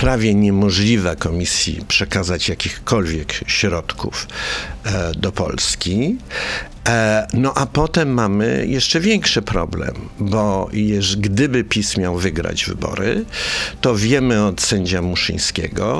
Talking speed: 100 wpm